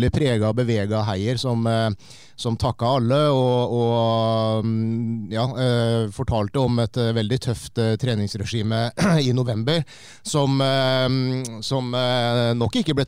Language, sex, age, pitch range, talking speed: English, male, 30-49, 110-130 Hz, 100 wpm